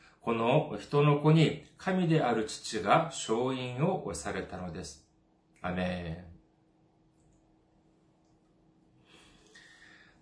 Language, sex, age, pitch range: Japanese, male, 40-59, 100-155 Hz